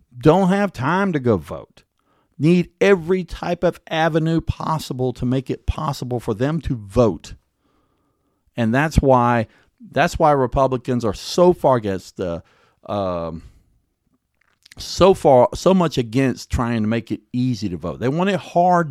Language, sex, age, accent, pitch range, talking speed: English, male, 40-59, American, 115-160 Hz, 150 wpm